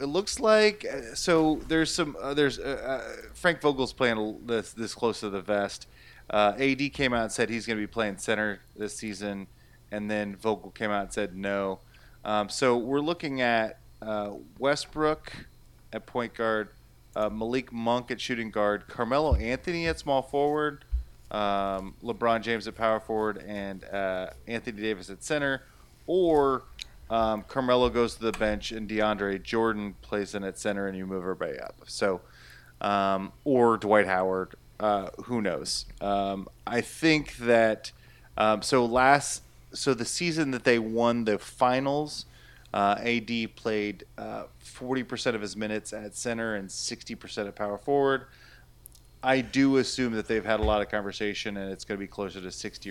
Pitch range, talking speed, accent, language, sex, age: 100-125 Hz, 170 wpm, American, English, male, 30-49